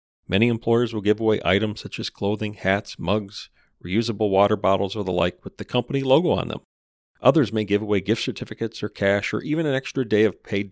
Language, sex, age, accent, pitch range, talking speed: English, male, 40-59, American, 95-130 Hz, 215 wpm